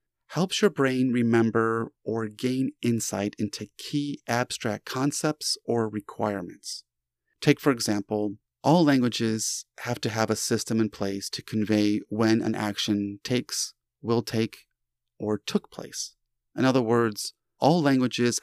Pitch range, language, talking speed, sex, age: 110-135 Hz, English, 135 wpm, male, 30-49